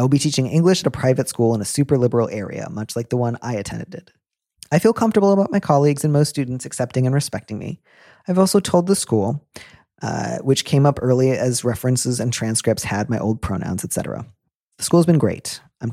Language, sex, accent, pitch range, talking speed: English, male, American, 115-150 Hz, 220 wpm